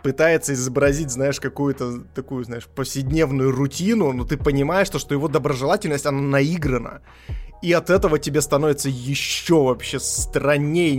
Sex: male